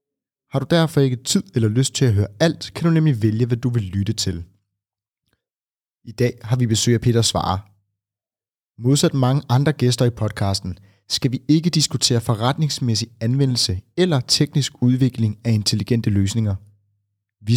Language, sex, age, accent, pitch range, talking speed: Danish, male, 30-49, native, 105-135 Hz, 160 wpm